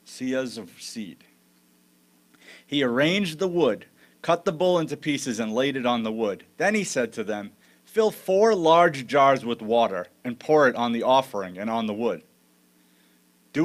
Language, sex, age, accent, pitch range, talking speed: English, male, 40-59, American, 105-160 Hz, 175 wpm